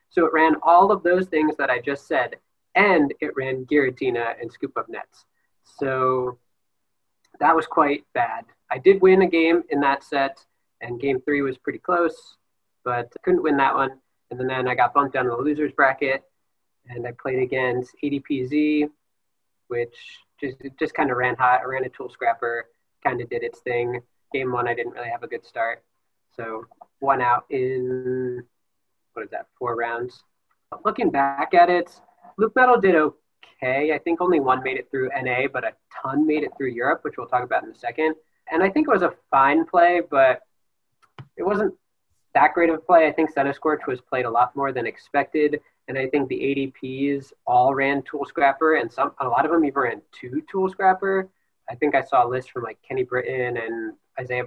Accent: American